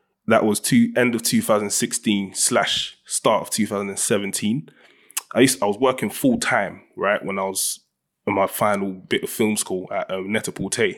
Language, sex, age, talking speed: English, male, 20-39, 185 wpm